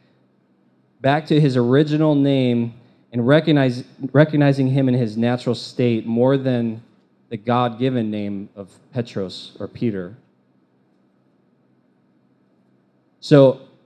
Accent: American